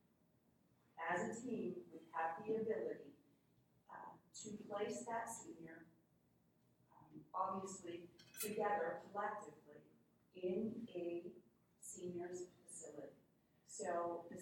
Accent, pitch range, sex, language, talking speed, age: American, 170-215 Hz, female, English, 90 wpm, 40-59